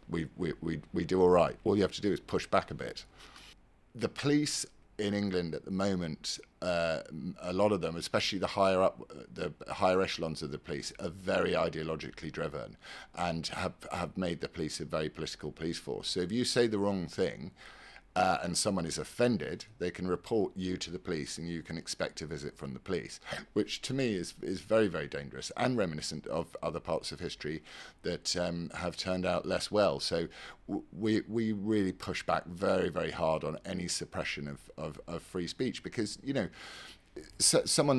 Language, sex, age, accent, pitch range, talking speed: English, male, 50-69, British, 85-105 Hz, 200 wpm